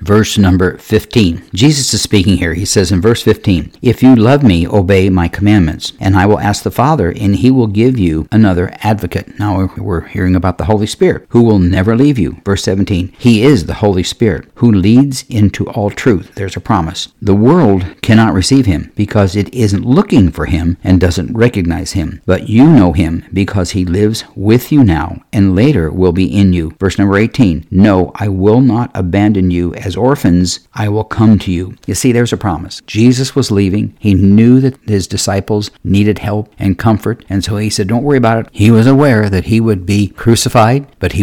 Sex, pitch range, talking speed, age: male, 95-120 Hz, 205 wpm, 60-79